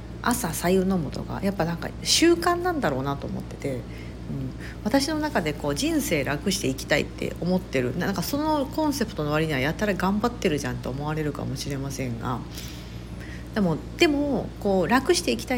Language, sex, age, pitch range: Japanese, female, 50-69, 140-230 Hz